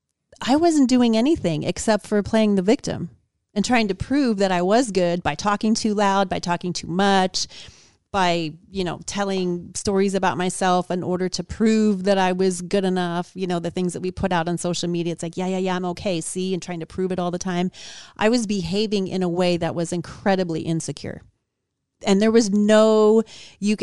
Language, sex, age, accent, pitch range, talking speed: English, female, 30-49, American, 175-210 Hz, 210 wpm